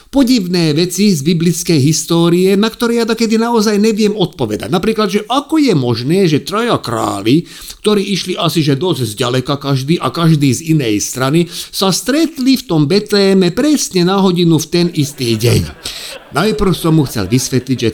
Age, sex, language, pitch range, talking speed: 50-69, male, Slovak, 145-200 Hz, 165 wpm